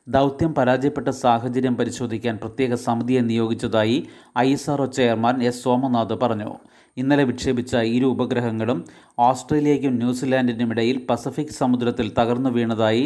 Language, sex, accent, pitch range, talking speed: Malayalam, male, native, 120-135 Hz, 110 wpm